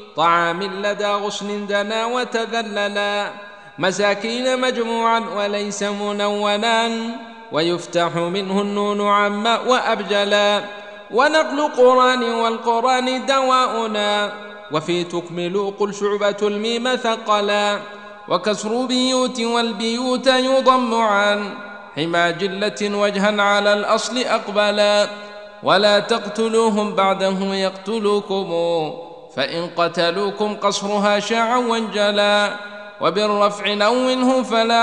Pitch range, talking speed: 205-230 Hz, 80 wpm